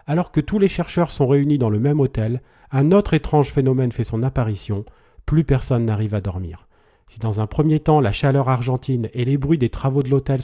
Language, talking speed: French, 220 wpm